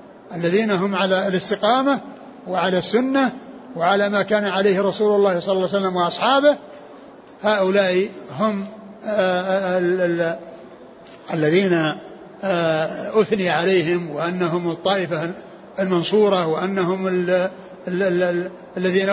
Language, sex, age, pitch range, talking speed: Arabic, male, 60-79, 190-230 Hz, 85 wpm